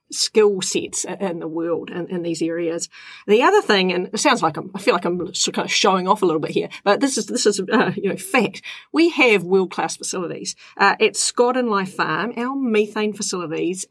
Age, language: 40-59, English